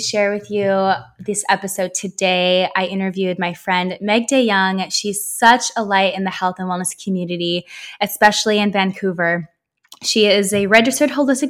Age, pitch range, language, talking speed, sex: 20-39, 185-230 Hz, English, 160 wpm, female